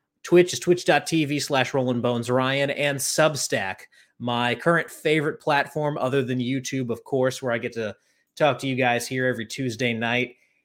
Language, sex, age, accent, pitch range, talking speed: English, male, 30-49, American, 125-150 Hz, 165 wpm